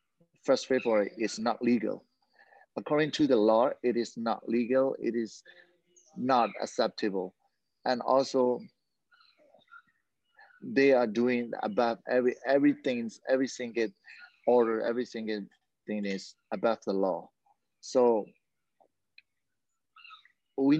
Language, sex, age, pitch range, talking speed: English, male, 30-49, 110-165 Hz, 105 wpm